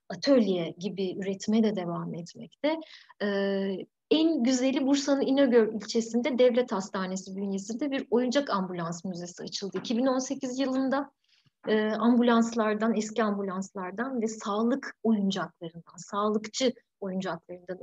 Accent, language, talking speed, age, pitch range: native, Turkish, 105 wpm, 30-49, 195-250 Hz